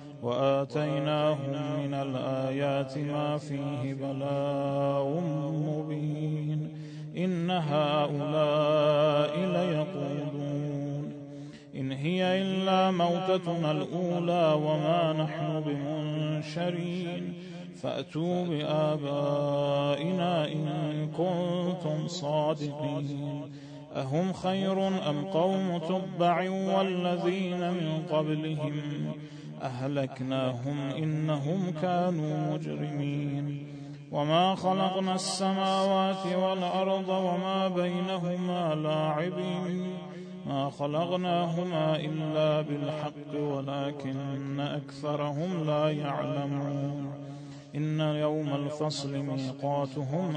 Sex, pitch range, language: male, 145-175 Hz, Persian